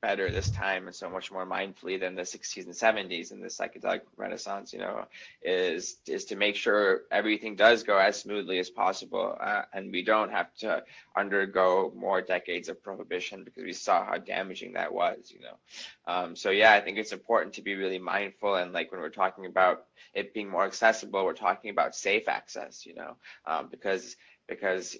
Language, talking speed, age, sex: English, 195 wpm, 20-39, male